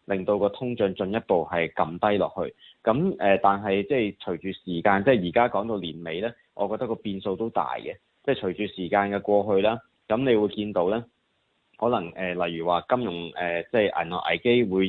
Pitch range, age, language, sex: 90-115 Hz, 20-39, Chinese, male